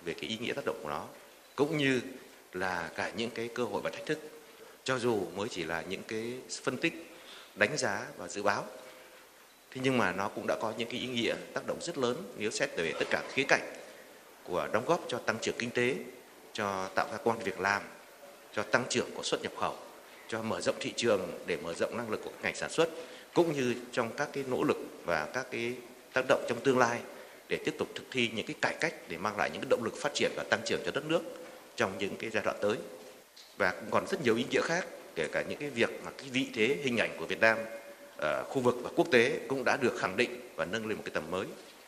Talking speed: 250 wpm